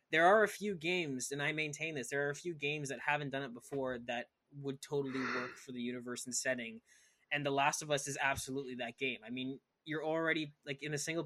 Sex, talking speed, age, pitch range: male, 240 wpm, 20-39, 125-145 Hz